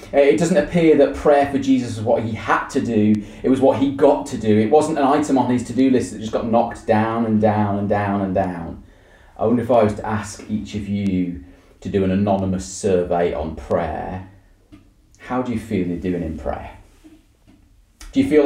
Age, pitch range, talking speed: 30-49, 100-130 Hz, 220 wpm